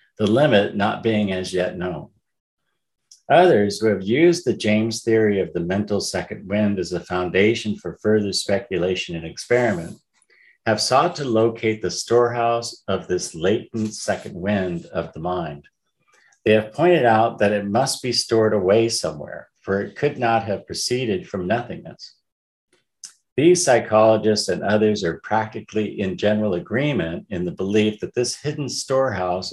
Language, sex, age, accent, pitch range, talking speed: English, male, 50-69, American, 95-115 Hz, 155 wpm